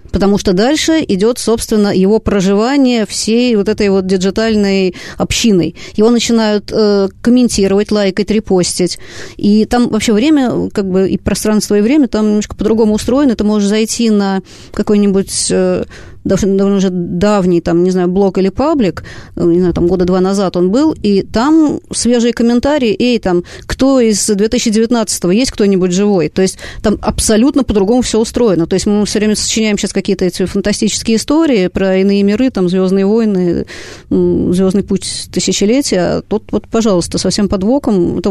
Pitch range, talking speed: 190-230 Hz, 155 wpm